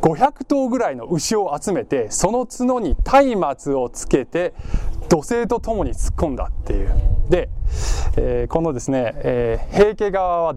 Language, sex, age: Japanese, male, 20-39